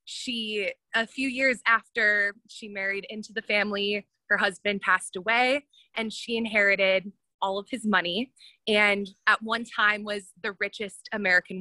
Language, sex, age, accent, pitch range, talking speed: English, female, 20-39, American, 205-235 Hz, 150 wpm